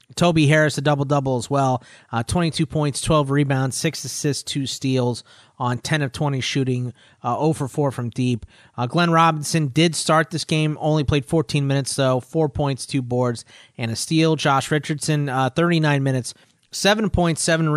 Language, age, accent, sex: English, 30-49, American, male